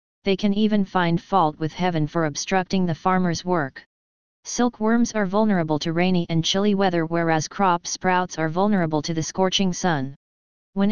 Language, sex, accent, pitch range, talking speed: English, female, American, 160-195 Hz, 165 wpm